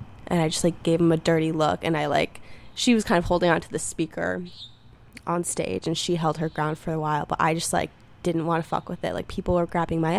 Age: 20-39